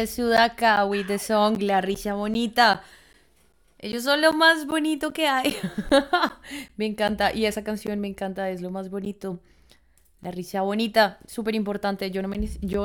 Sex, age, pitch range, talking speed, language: female, 20-39, 185-220 Hz, 145 wpm, English